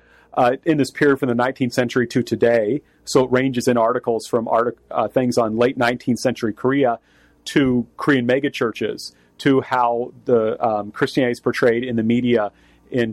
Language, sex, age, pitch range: English, male, 40-59, 115-140 Hz